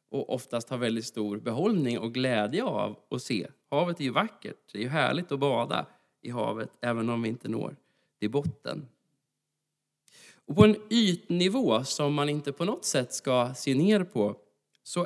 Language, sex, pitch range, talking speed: Swedish, male, 115-150 Hz, 180 wpm